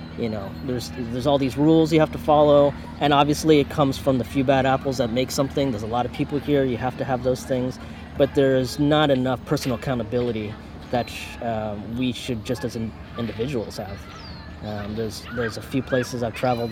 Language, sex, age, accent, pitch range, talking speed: English, male, 30-49, American, 115-140 Hz, 205 wpm